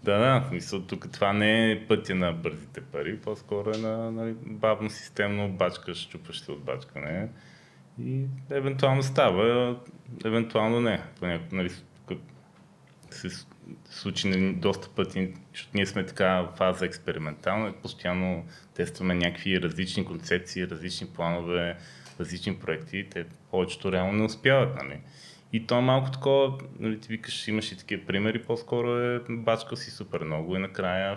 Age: 20-39